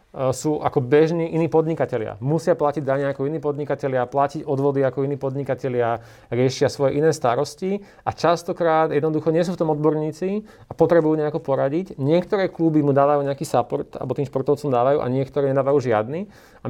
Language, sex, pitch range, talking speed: Slovak, male, 130-155 Hz, 170 wpm